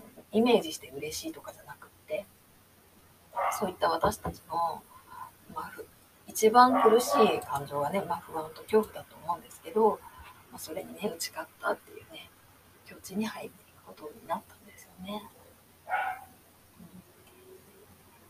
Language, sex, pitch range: Japanese, female, 170-225 Hz